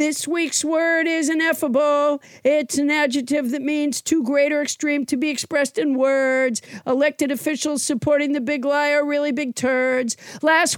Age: 50-69